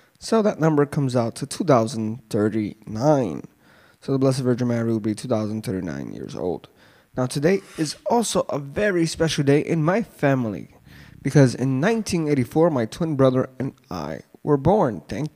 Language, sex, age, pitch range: English, male, 20-39, 120-150 Hz